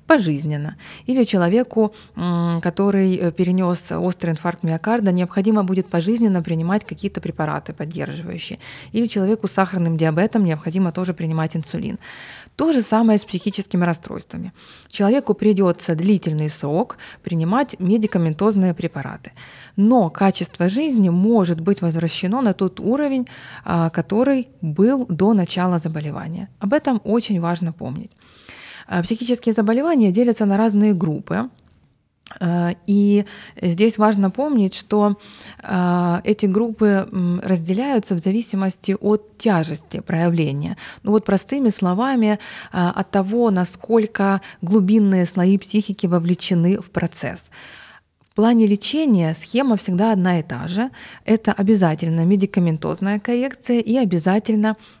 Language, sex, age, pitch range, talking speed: Ukrainian, female, 20-39, 175-220 Hz, 110 wpm